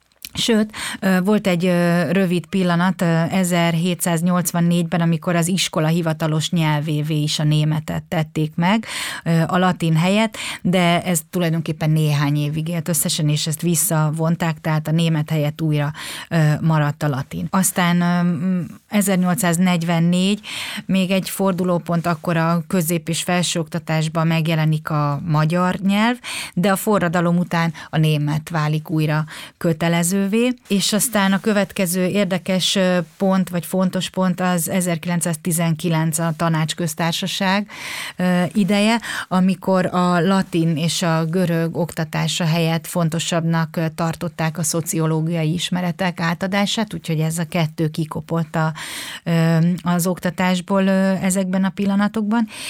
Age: 30-49